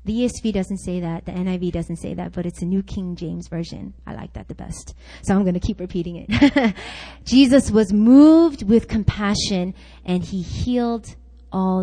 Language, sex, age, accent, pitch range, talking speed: English, female, 20-39, American, 165-245 Hz, 195 wpm